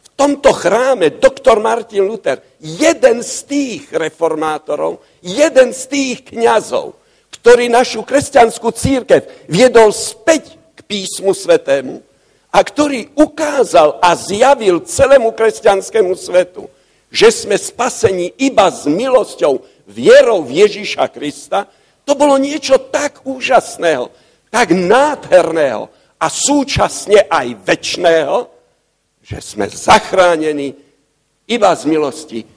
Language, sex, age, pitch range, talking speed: Slovak, male, 60-79, 180-285 Hz, 105 wpm